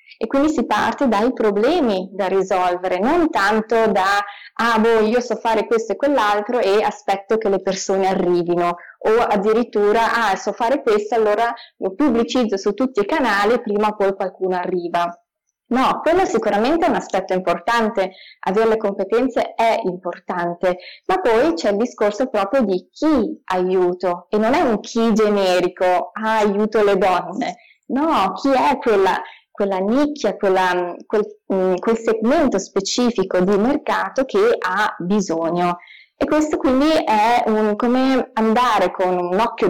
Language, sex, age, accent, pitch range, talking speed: Italian, female, 20-39, native, 190-245 Hz, 150 wpm